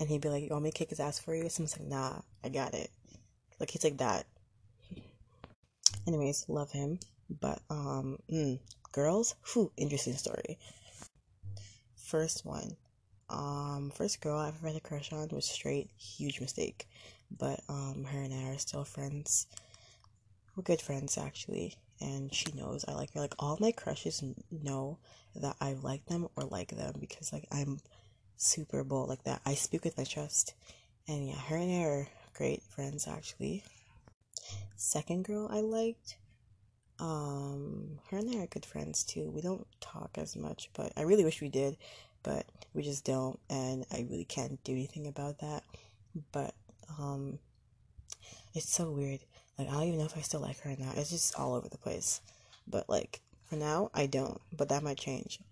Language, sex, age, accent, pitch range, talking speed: English, female, 20-39, American, 115-155 Hz, 180 wpm